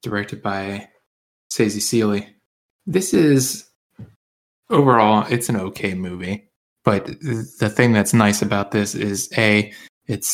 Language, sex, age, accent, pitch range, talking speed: English, male, 20-39, American, 105-120 Hz, 120 wpm